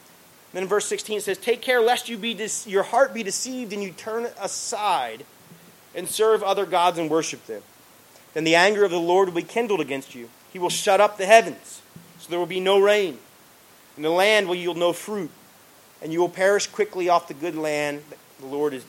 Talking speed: 220 wpm